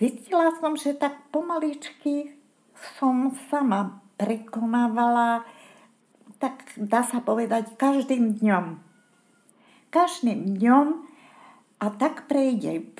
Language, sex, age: Slovak, female, 50-69